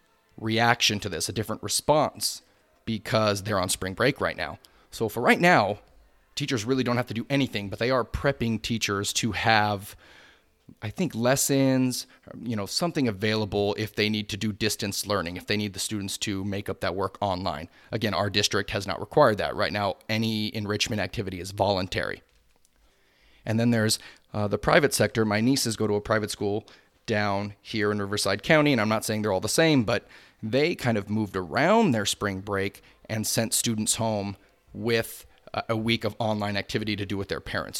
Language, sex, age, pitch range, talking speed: English, male, 30-49, 100-115 Hz, 190 wpm